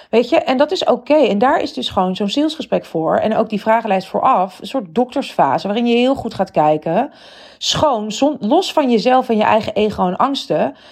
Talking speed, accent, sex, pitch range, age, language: 210 wpm, Dutch, female, 190-255 Hz, 40-59, Dutch